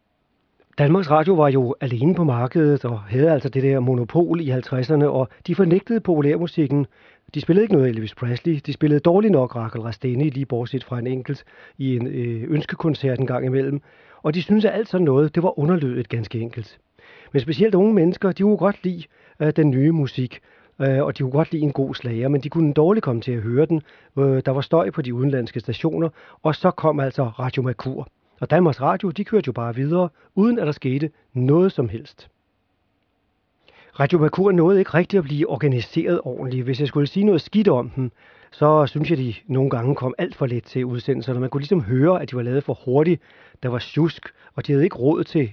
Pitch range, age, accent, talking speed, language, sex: 125-160 Hz, 40-59, native, 205 wpm, Danish, male